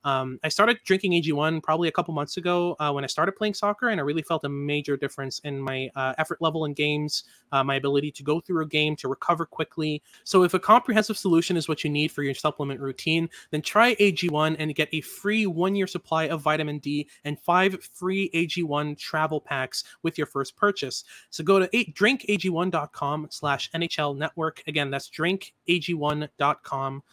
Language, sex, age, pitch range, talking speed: English, male, 20-39, 145-180 Hz, 190 wpm